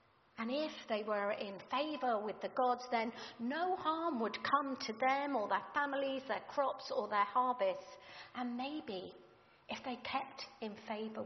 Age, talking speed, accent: 50-69, 165 wpm, British